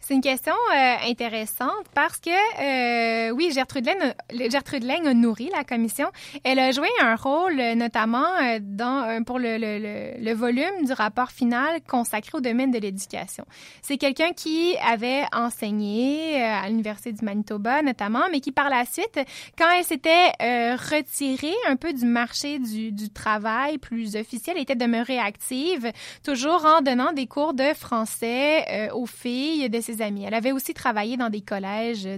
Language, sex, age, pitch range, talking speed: French, female, 20-39, 225-290 Hz, 175 wpm